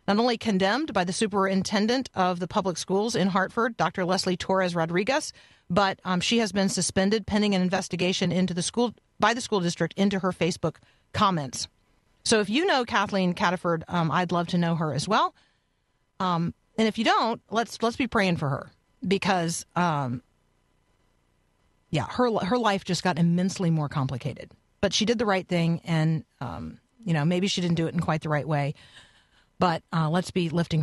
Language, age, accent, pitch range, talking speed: English, 40-59, American, 170-205 Hz, 190 wpm